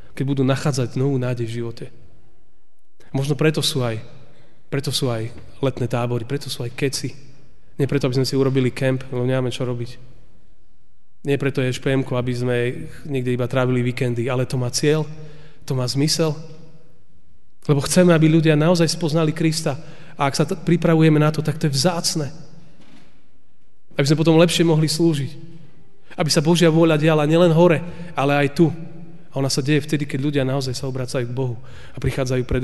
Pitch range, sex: 125-155 Hz, male